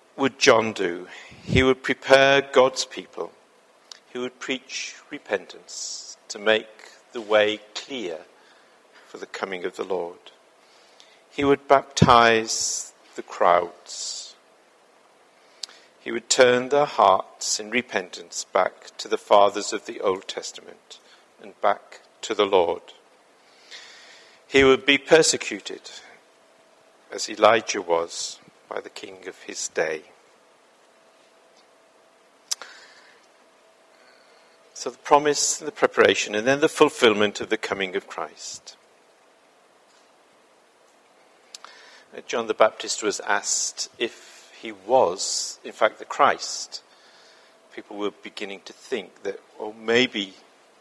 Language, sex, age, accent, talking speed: English, male, 50-69, British, 110 wpm